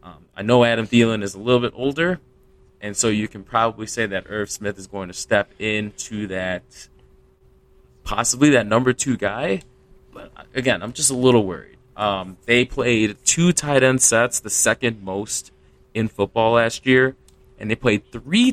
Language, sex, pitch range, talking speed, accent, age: English, male, 90-120 Hz, 180 wpm, American, 20-39